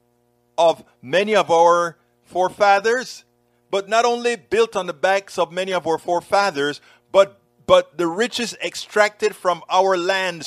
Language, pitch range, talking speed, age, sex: English, 120-200 Hz, 145 wpm, 50-69, male